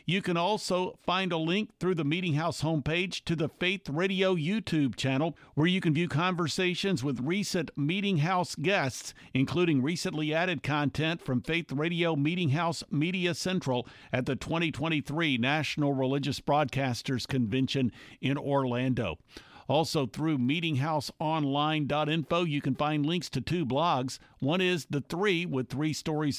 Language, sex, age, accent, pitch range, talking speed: English, male, 50-69, American, 140-175 Hz, 145 wpm